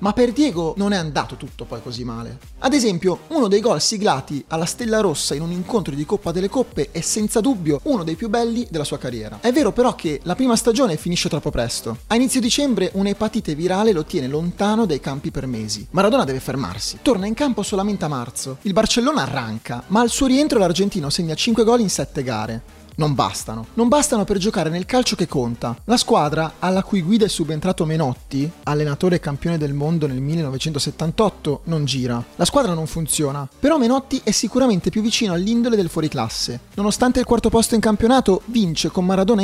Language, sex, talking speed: Italian, male, 200 wpm